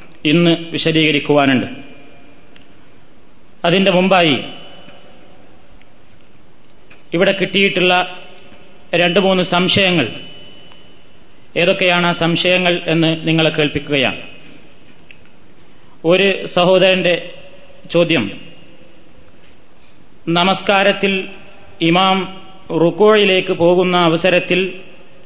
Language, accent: Malayalam, native